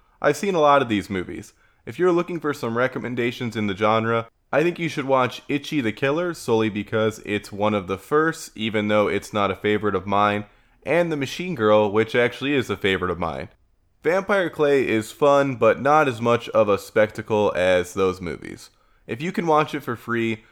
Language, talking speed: English, 210 wpm